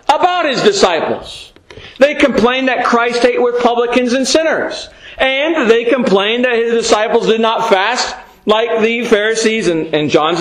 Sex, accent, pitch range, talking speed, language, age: male, American, 220-285 Hz, 155 wpm, English, 40-59